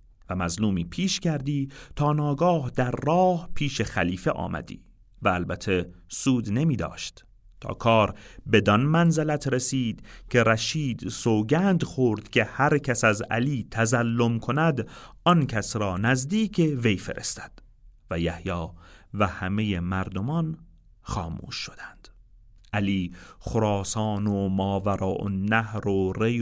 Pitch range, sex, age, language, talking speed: 95-130 Hz, male, 40-59, Persian, 120 wpm